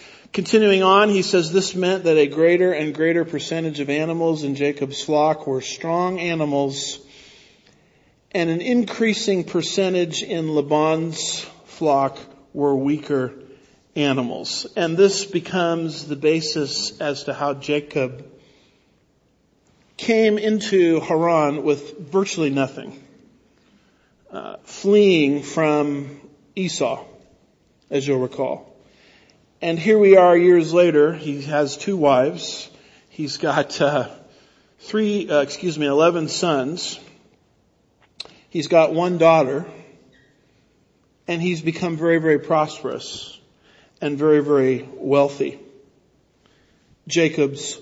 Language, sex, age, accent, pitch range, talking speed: English, male, 50-69, American, 145-175 Hz, 110 wpm